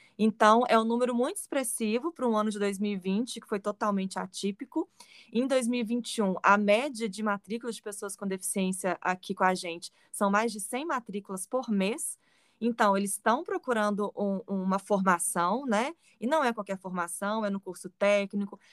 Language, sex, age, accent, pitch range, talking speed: Portuguese, female, 20-39, Brazilian, 190-230 Hz, 165 wpm